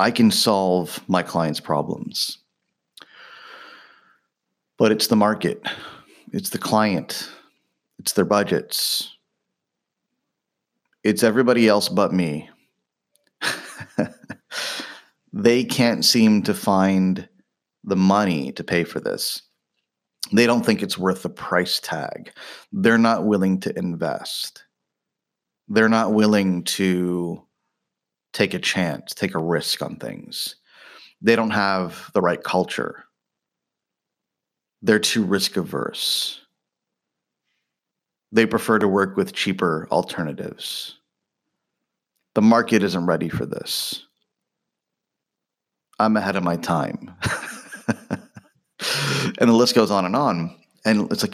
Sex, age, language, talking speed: male, 30-49, English, 110 wpm